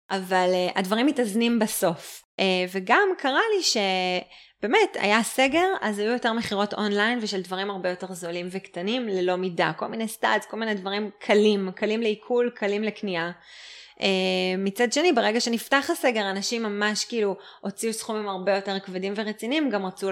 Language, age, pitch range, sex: Hebrew, 20-39, 185-230 Hz, female